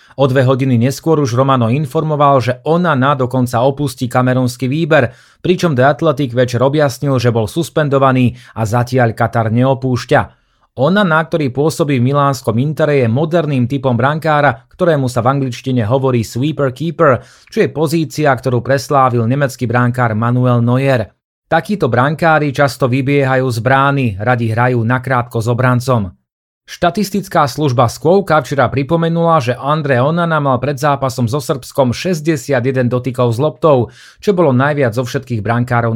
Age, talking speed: 30-49, 145 wpm